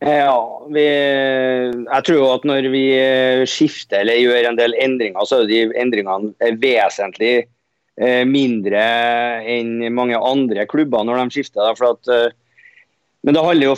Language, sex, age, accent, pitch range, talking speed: English, male, 30-49, Swedish, 125-150 Hz, 140 wpm